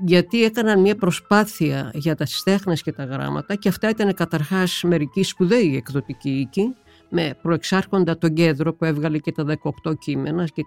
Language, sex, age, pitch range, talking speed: Greek, female, 50-69, 160-205 Hz, 165 wpm